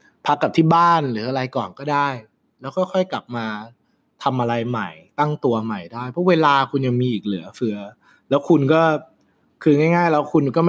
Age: 20-39